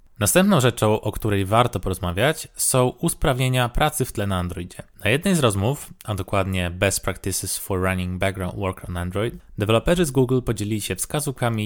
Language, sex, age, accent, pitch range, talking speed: Polish, male, 20-39, native, 100-140 Hz, 170 wpm